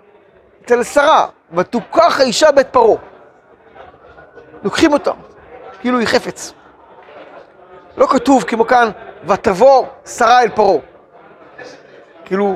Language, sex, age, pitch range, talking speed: Hebrew, male, 40-59, 195-265 Hz, 90 wpm